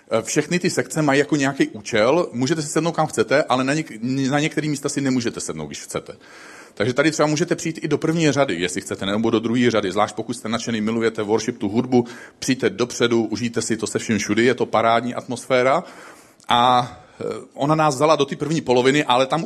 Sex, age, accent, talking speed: male, 40-59, native, 210 wpm